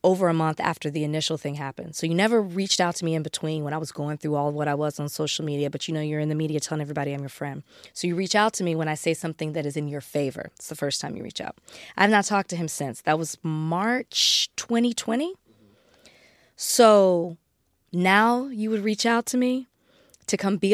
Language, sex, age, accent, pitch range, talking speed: English, female, 20-39, American, 160-230 Hz, 245 wpm